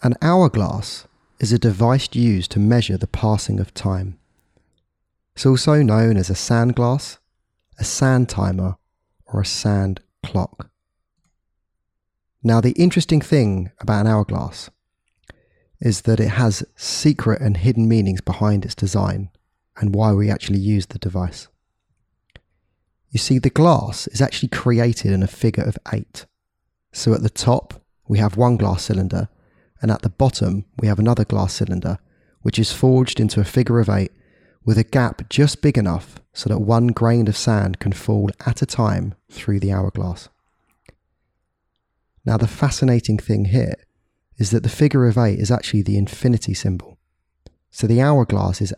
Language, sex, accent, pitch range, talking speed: English, male, British, 100-120 Hz, 160 wpm